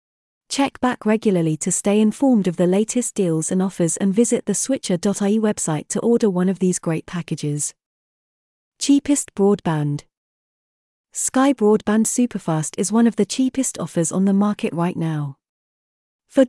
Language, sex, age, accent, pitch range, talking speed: English, female, 30-49, British, 175-230 Hz, 150 wpm